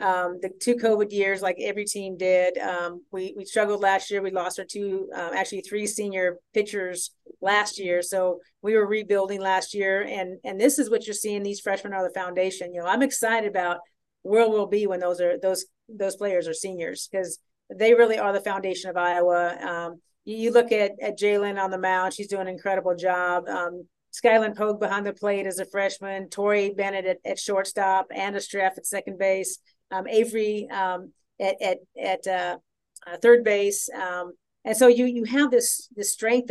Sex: female